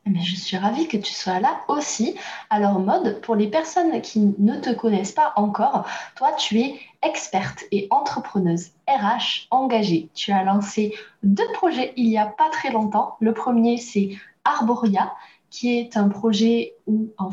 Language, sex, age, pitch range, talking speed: French, female, 20-39, 200-245 Hz, 165 wpm